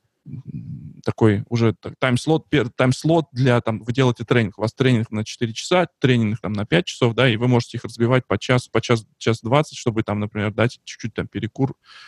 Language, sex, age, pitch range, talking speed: English, male, 20-39, 110-135 Hz, 185 wpm